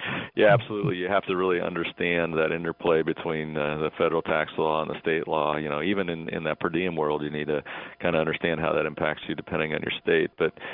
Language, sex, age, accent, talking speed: English, male, 40-59, American, 240 wpm